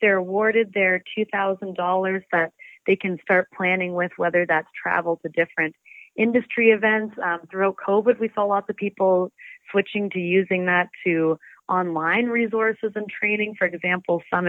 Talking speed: 160 wpm